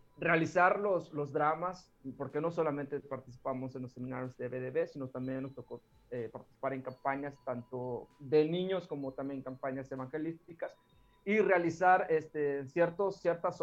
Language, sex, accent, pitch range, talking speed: Spanish, male, Mexican, 125-150 Hz, 145 wpm